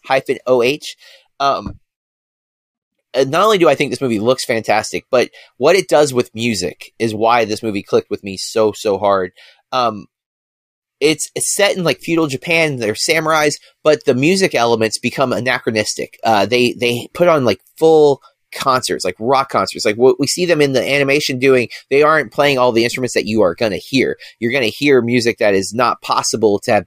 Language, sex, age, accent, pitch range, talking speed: English, male, 30-49, American, 110-150 Hz, 195 wpm